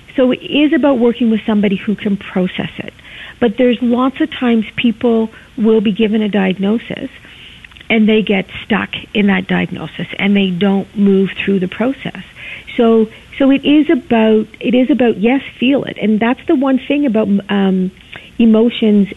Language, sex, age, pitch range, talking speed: English, female, 50-69, 195-235 Hz, 170 wpm